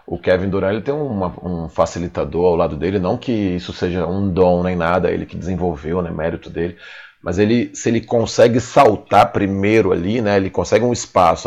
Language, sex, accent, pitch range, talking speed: Portuguese, male, Brazilian, 90-105 Hz, 200 wpm